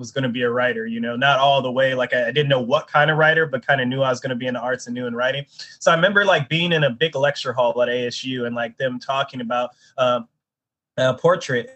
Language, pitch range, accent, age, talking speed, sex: English, 130-155 Hz, American, 20-39, 285 wpm, male